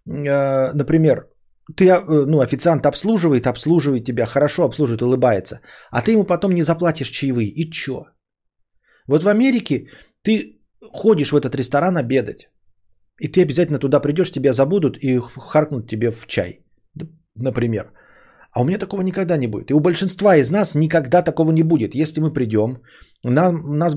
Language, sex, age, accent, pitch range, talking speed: Russian, male, 30-49, native, 125-175 Hz, 150 wpm